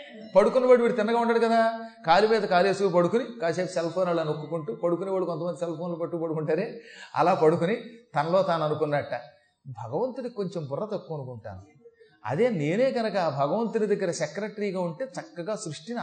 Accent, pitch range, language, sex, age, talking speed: native, 155-225 Hz, Telugu, male, 30-49, 150 wpm